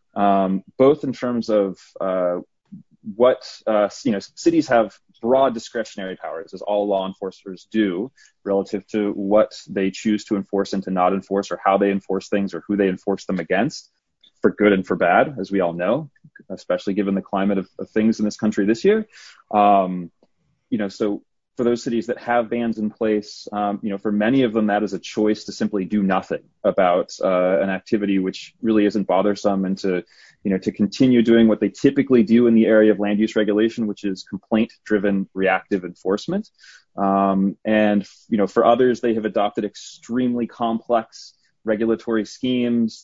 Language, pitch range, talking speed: English, 100-115 Hz, 190 wpm